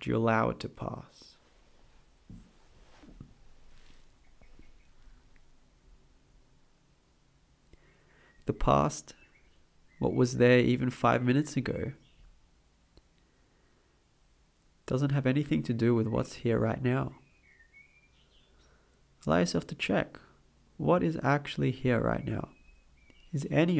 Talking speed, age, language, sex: 95 wpm, 30-49, English, male